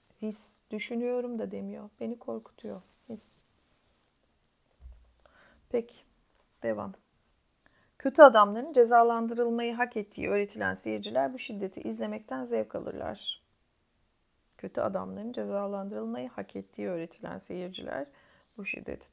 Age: 30-49